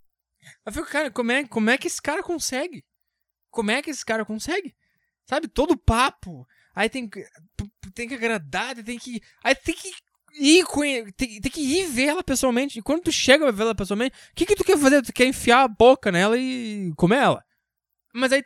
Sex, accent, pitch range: male, Brazilian, 175-260 Hz